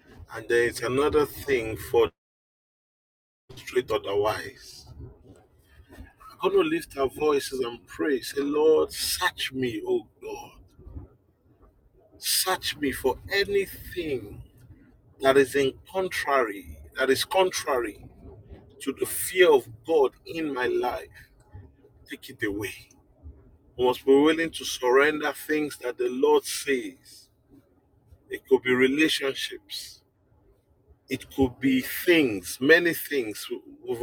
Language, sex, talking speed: English, male, 115 wpm